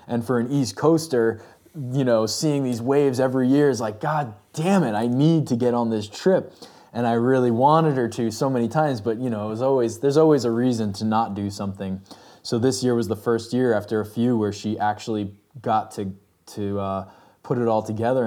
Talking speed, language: 225 wpm, English